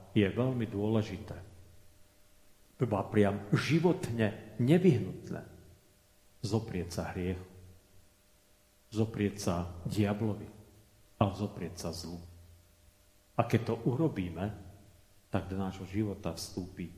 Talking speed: 90 wpm